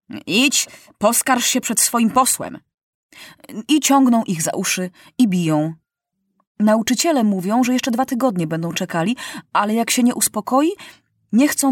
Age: 30-49